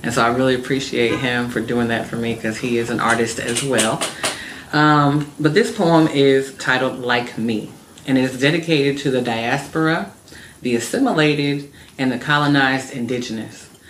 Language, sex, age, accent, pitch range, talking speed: English, female, 30-49, American, 125-155 Hz, 170 wpm